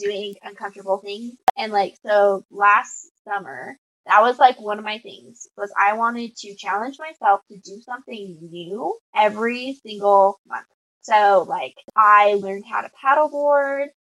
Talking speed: 150 wpm